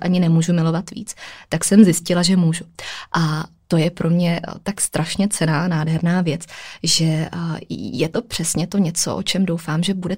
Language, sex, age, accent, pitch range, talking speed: Czech, female, 20-39, native, 165-185 Hz, 185 wpm